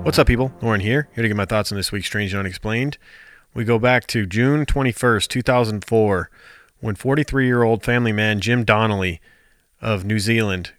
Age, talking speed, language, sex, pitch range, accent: 30-49, 180 wpm, English, male, 105-125 Hz, American